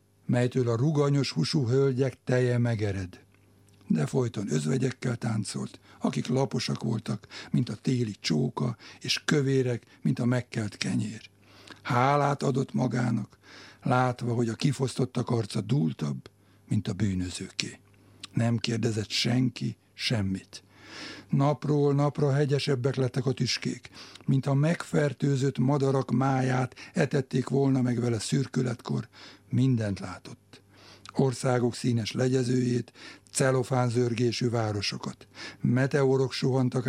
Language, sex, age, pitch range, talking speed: Hungarian, male, 60-79, 110-135 Hz, 105 wpm